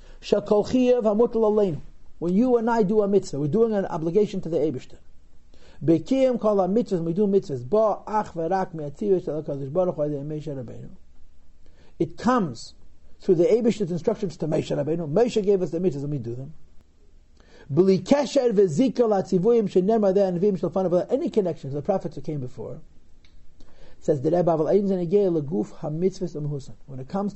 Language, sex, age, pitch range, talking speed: English, male, 50-69, 145-215 Hz, 180 wpm